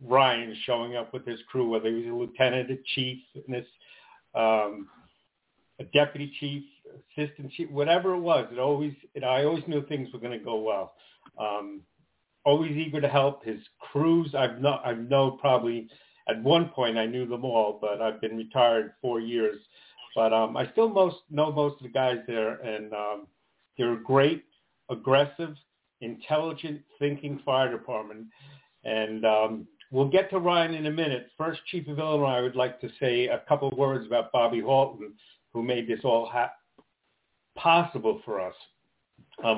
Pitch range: 115-145 Hz